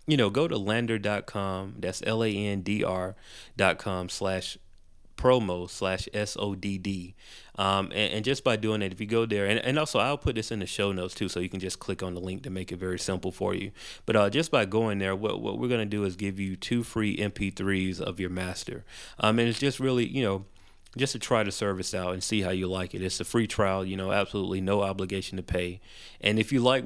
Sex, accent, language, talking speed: male, American, English, 245 wpm